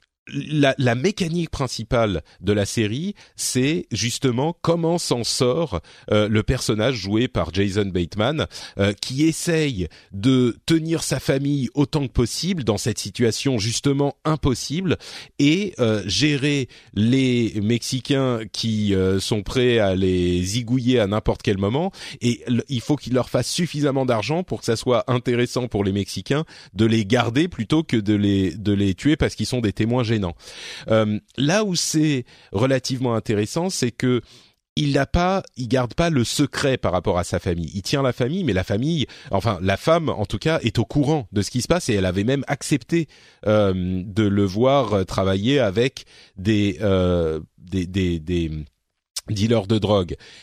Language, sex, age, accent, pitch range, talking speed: French, male, 30-49, French, 105-140 Hz, 170 wpm